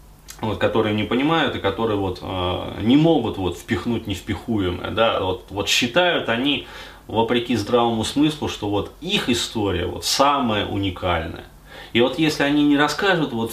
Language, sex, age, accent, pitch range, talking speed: Russian, male, 20-39, native, 95-125 Hz, 150 wpm